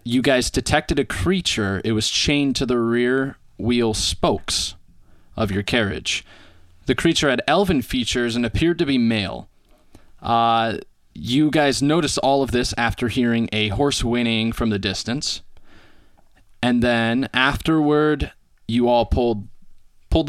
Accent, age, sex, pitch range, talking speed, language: American, 20-39, male, 105-135 Hz, 140 wpm, English